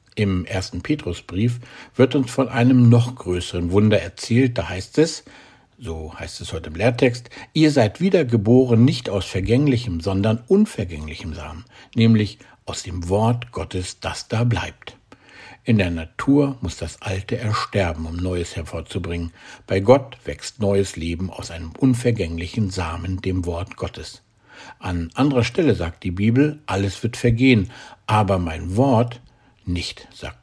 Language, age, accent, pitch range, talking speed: German, 60-79, German, 90-125 Hz, 145 wpm